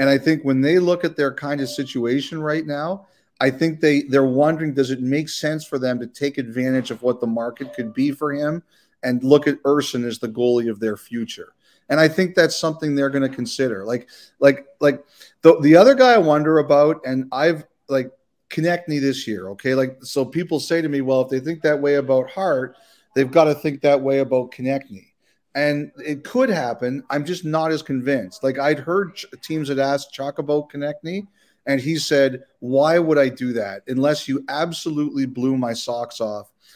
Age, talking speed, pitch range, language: 40-59, 210 wpm, 130-150 Hz, English